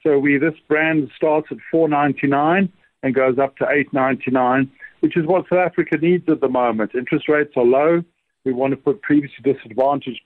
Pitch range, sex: 135-160 Hz, male